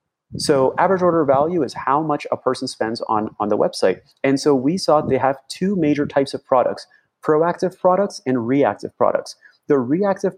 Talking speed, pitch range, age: 185 wpm, 125-155 Hz, 30-49